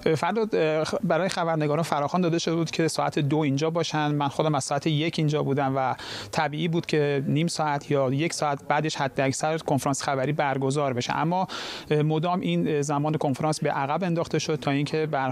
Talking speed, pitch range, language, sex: 185 wpm, 140-155 Hz, Persian, male